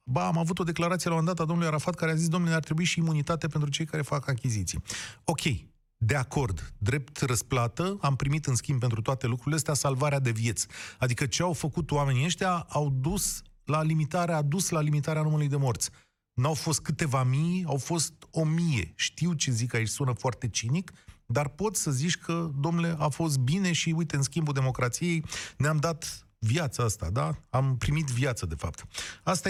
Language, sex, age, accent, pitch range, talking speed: Romanian, male, 30-49, native, 115-160 Hz, 195 wpm